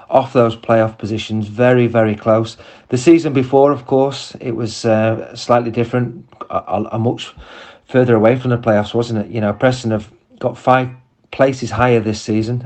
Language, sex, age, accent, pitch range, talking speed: English, male, 30-49, British, 110-125 Hz, 175 wpm